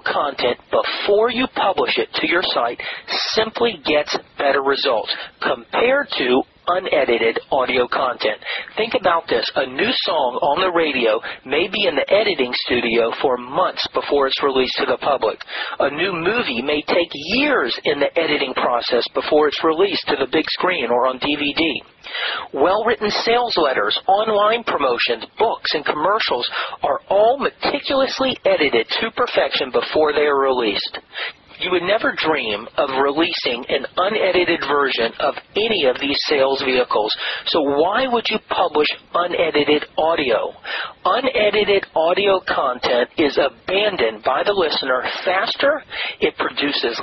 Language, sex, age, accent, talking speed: English, male, 40-59, American, 140 wpm